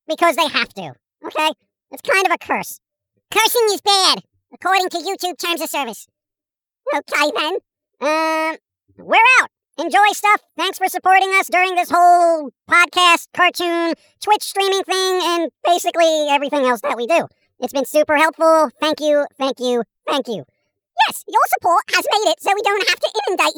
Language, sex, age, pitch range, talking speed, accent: English, male, 50-69, 285-370 Hz, 170 wpm, American